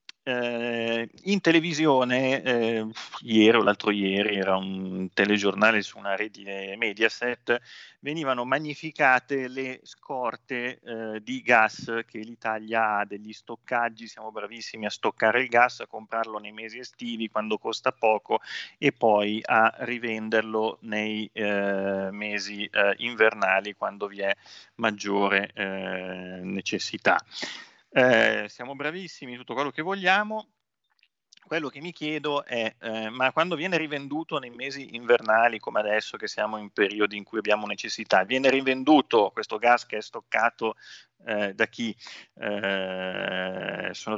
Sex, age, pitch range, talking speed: male, 30-49, 105-130 Hz, 135 wpm